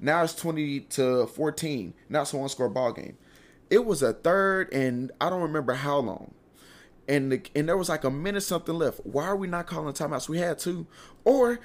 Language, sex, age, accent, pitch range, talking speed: English, male, 20-39, American, 145-200 Hz, 210 wpm